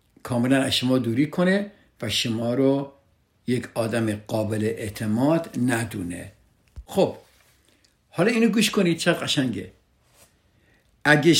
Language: Persian